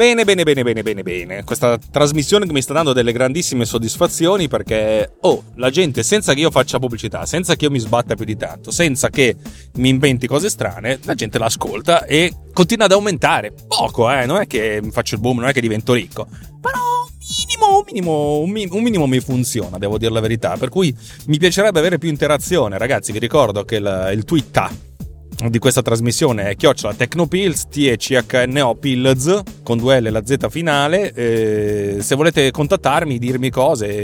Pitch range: 110-145 Hz